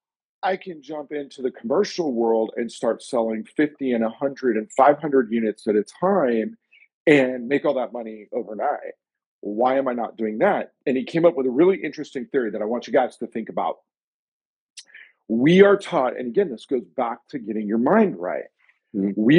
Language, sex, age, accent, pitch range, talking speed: English, male, 50-69, American, 115-155 Hz, 190 wpm